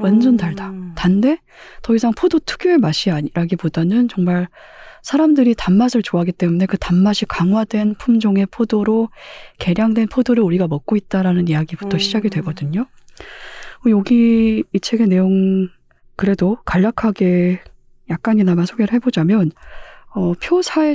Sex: female